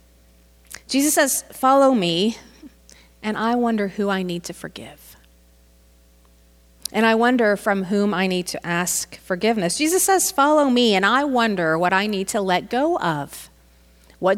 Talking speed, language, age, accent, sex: 155 wpm, English, 40-59, American, female